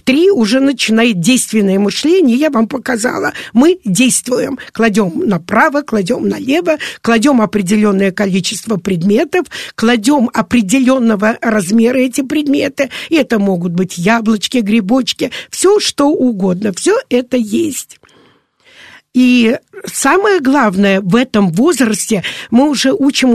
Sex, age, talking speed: female, 50-69, 110 wpm